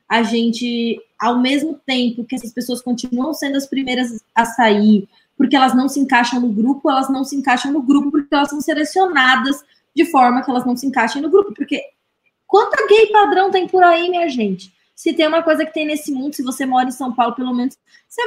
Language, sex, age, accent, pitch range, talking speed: Portuguese, female, 20-39, Brazilian, 230-320 Hz, 215 wpm